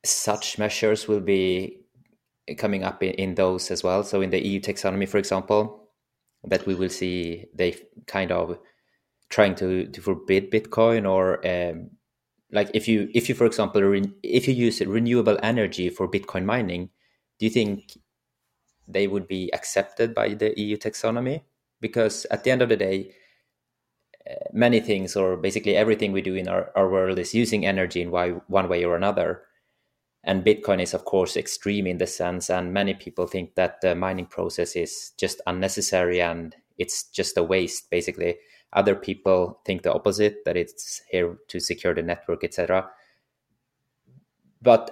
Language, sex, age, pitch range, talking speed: English, male, 30-49, 95-110 Hz, 165 wpm